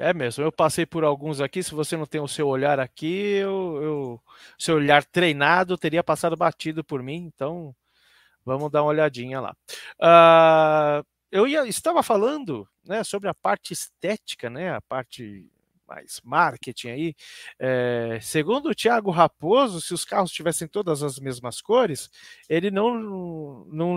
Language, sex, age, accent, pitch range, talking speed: Portuguese, male, 40-59, Brazilian, 135-180 Hz, 150 wpm